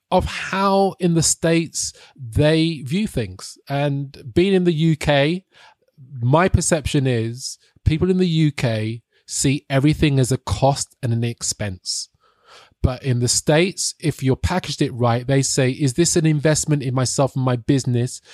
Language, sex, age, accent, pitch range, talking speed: English, male, 20-39, British, 120-155 Hz, 155 wpm